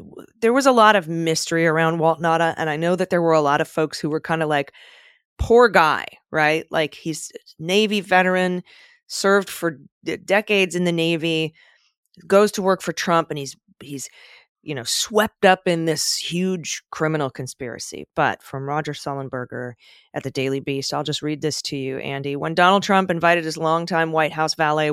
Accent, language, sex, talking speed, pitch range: American, English, female, 195 wpm, 150-190 Hz